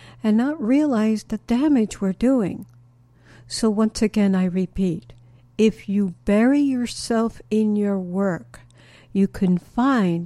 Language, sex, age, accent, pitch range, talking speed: English, female, 60-79, American, 180-235 Hz, 130 wpm